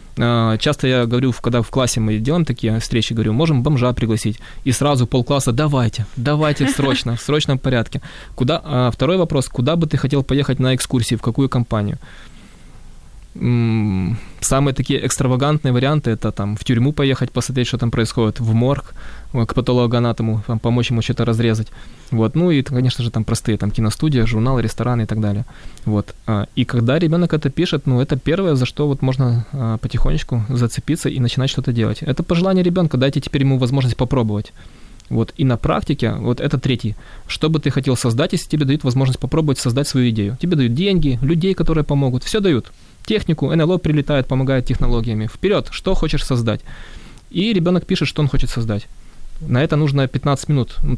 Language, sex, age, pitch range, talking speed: Ukrainian, male, 20-39, 115-145 Hz, 175 wpm